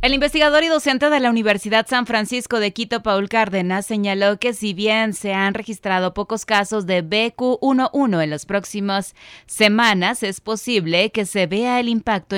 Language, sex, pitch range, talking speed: Spanish, female, 160-205 Hz, 170 wpm